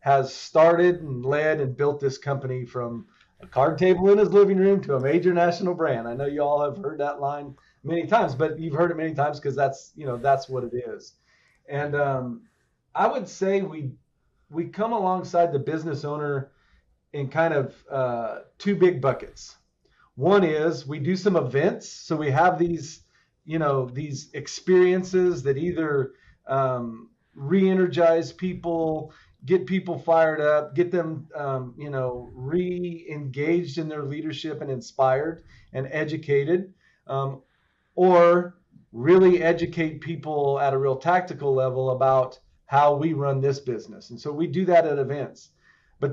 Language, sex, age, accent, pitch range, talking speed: English, male, 40-59, American, 135-170 Hz, 160 wpm